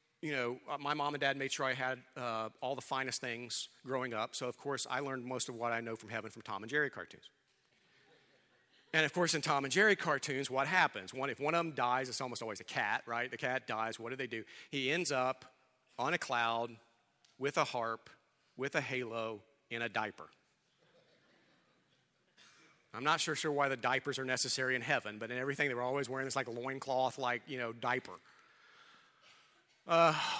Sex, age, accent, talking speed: male, 40-59, American, 205 wpm